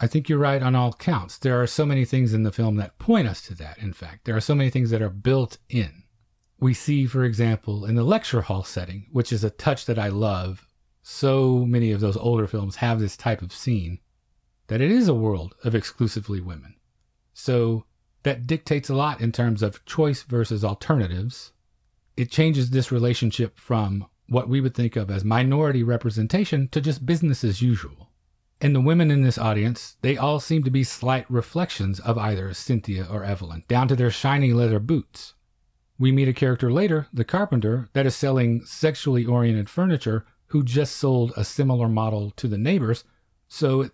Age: 40-59